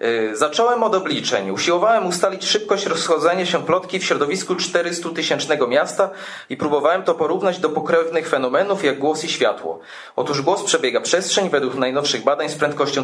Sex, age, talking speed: male, 30-49, 150 wpm